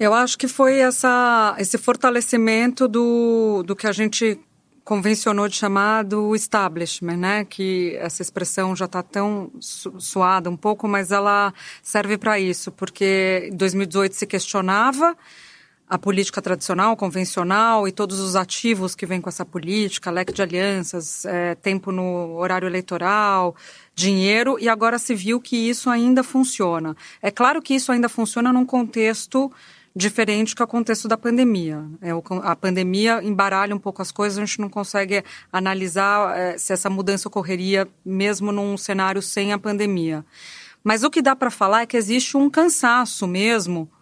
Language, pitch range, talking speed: Portuguese, 190-235 Hz, 155 wpm